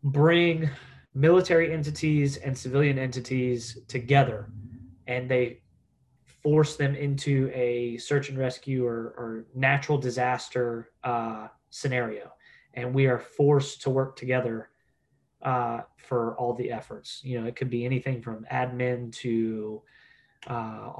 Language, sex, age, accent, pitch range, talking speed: English, male, 20-39, American, 120-140 Hz, 125 wpm